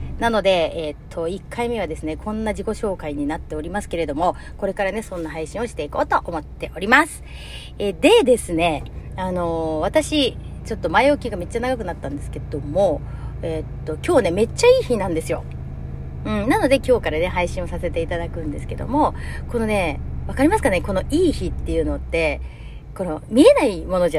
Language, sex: Japanese, female